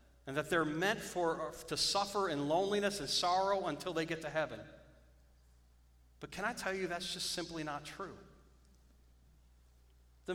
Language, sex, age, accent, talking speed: English, male, 40-59, American, 155 wpm